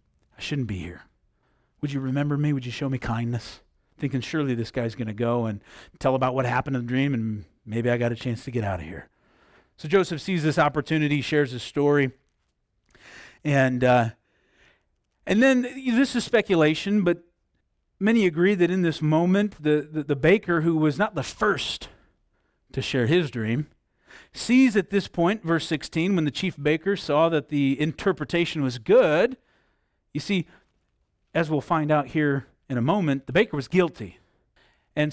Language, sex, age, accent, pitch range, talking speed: English, male, 40-59, American, 125-170 Hz, 180 wpm